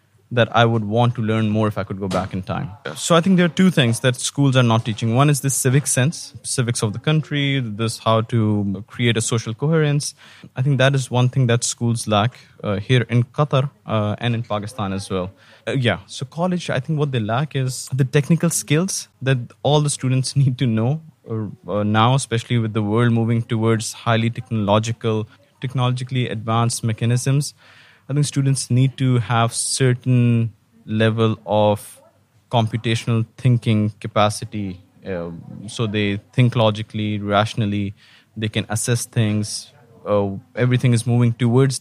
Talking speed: 175 wpm